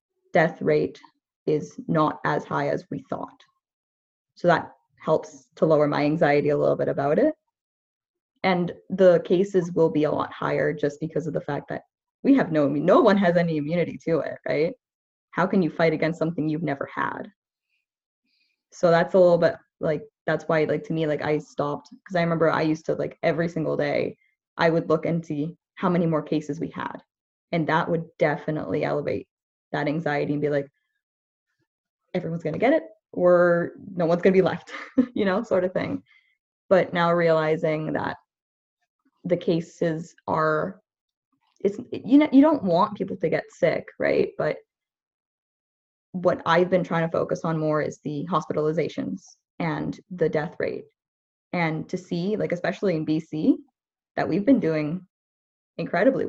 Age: 20-39